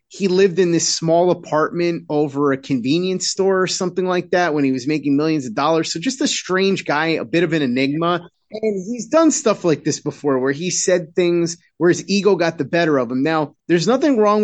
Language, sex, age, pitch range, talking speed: English, male, 30-49, 150-210 Hz, 225 wpm